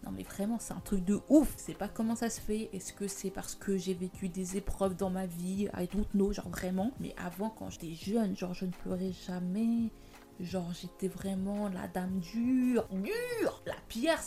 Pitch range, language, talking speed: 185-220 Hz, French, 215 wpm